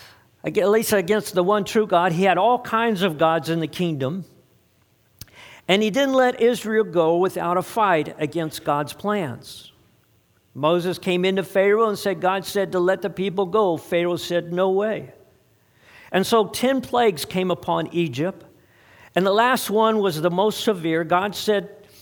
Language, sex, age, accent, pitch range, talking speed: English, male, 50-69, American, 165-210 Hz, 170 wpm